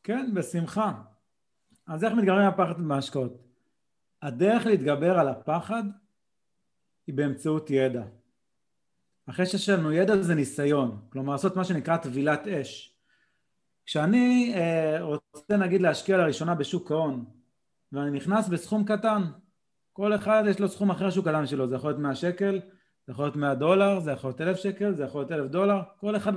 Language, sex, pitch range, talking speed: Hebrew, male, 145-200 Hz, 155 wpm